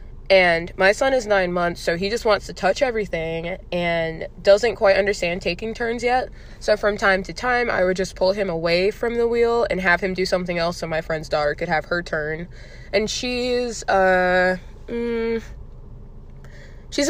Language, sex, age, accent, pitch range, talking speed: English, female, 20-39, American, 170-210 Hz, 185 wpm